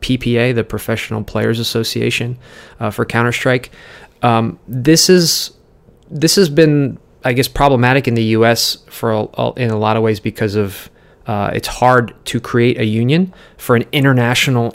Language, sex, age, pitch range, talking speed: English, male, 30-49, 110-130 Hz, 165 wpm